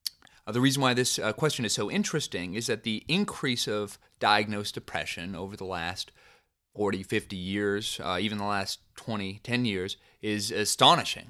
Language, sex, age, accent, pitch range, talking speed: English, male, 30-49, American, 105-135 Hz, 170 wpm